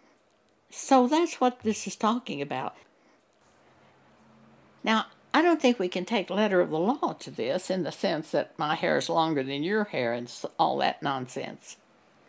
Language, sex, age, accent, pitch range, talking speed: English, female, 60-79, American, 170-230 Hz, 170 wpm